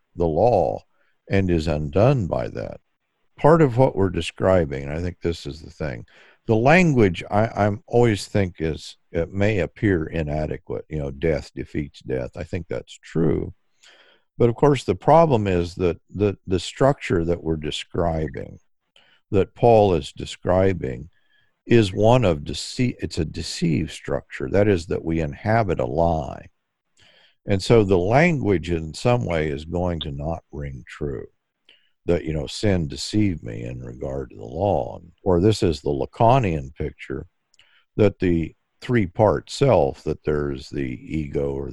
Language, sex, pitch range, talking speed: English, male, 75-105 Hz, 160 wpm